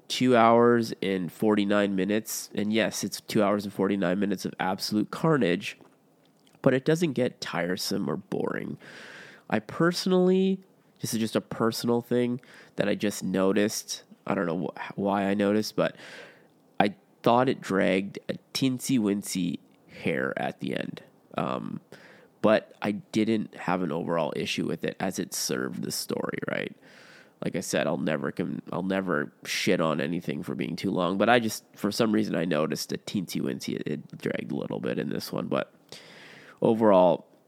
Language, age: English, 20-39